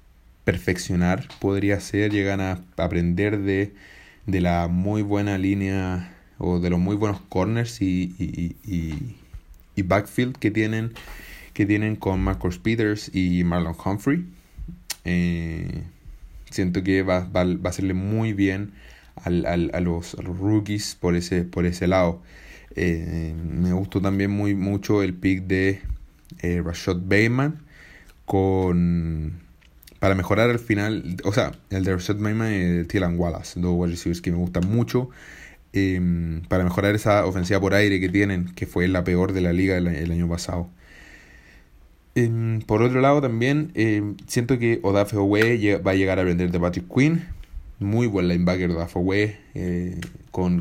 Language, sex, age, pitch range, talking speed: Spanish, male, 20-39, 90-100 Hz, 160 wpm